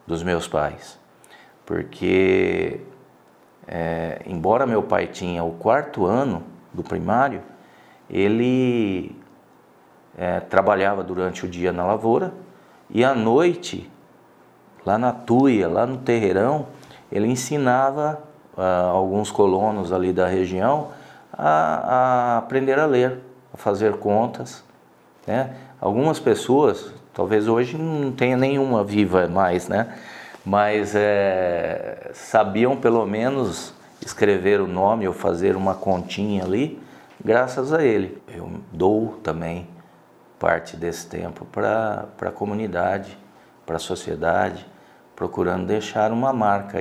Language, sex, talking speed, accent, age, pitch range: Portuguese, male, 110 wpm, Brazilian, 40-59, 90-125 Hz